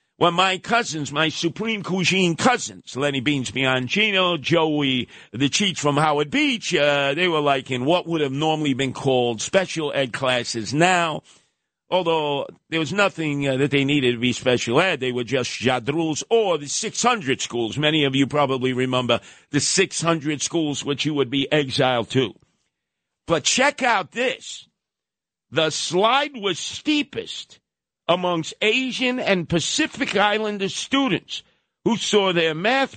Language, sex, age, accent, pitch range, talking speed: English, male, 50-69, American, 145-230 Hz, 155 wpm